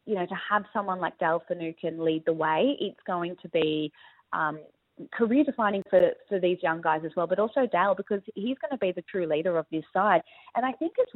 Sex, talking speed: female, 225 wpm